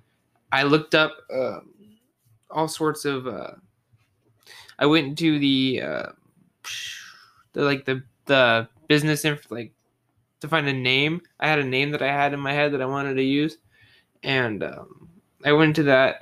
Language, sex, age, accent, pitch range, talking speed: English, male, 20-39, American, 125-150 Hz, 165 wpm